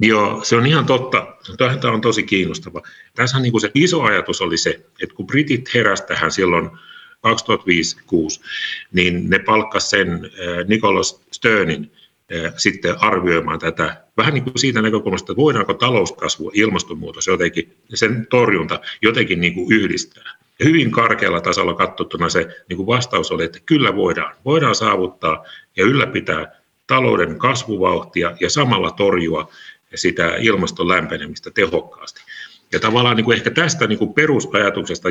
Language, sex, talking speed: Finnish, male, 140 wpm